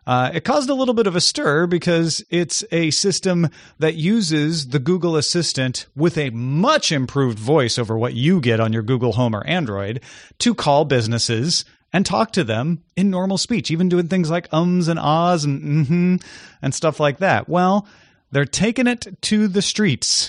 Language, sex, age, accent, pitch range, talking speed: English, male, 30-49, American, 125-175 Hz, 190 wpm